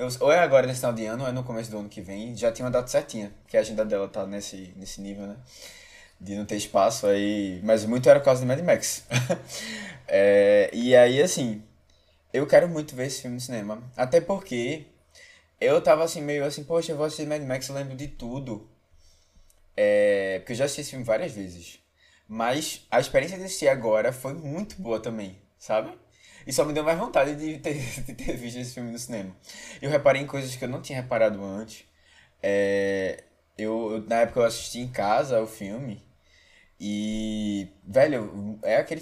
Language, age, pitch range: Portuguese, 20-39, 105-140 Hz